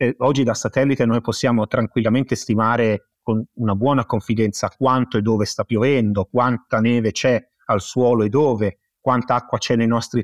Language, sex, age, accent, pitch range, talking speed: Italian, male, 30-49, native, 105-130 Hz, 165 wpm